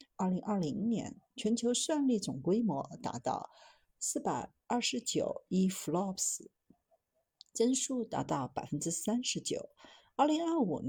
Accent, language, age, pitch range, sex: native, Chinese, 50-69, 150-240 Hz, female